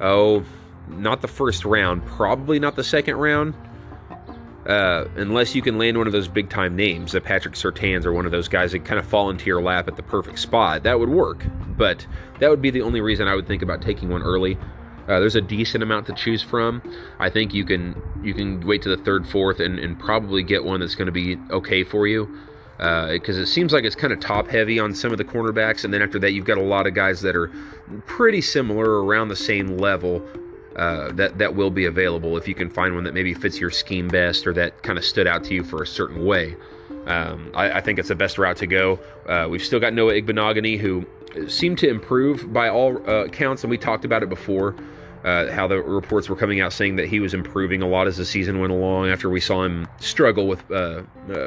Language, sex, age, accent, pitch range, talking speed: English, male, 30-49, American, 90-110 Hz, 235 wpm